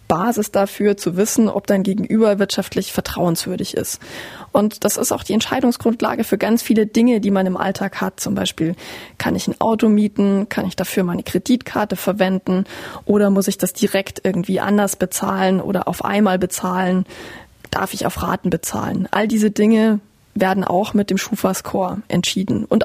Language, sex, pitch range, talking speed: German, female, 190-220 Hz, 170 wpm